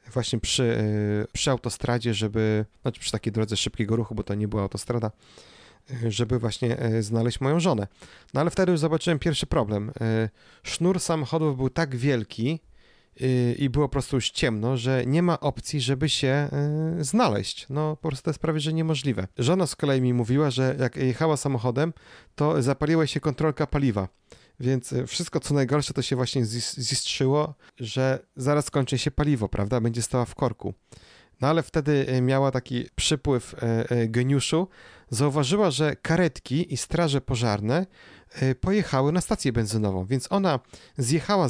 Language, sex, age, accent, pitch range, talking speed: Polish, male, 30-49, native, 120-155 Hz, 160 wpm